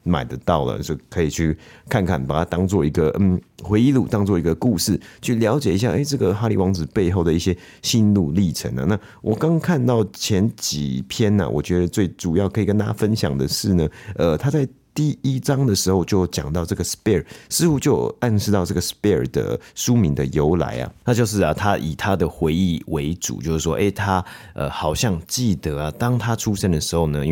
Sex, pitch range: male, 75-100 Hz